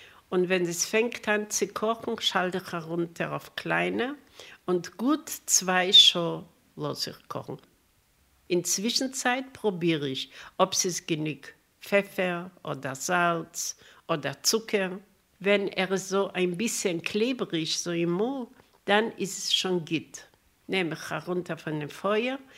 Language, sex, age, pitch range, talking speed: German, female, 60-79, 170-205 Hz, 140 wpm